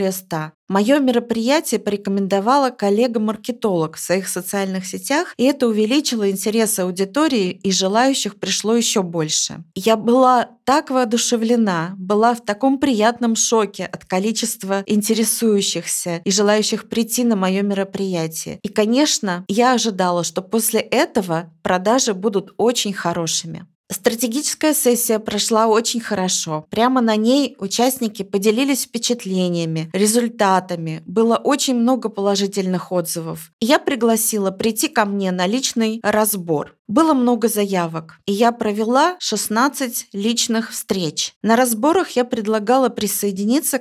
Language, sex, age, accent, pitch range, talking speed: Russian, female, 20-39, native, 190-240 Hz, 120 wpm